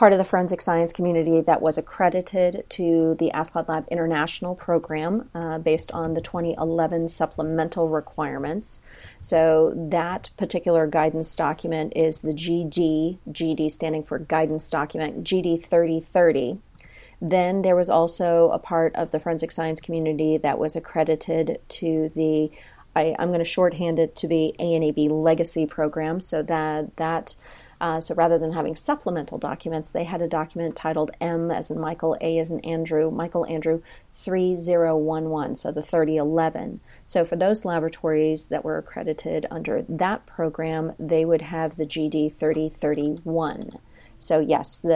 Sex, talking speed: female, 145 wpm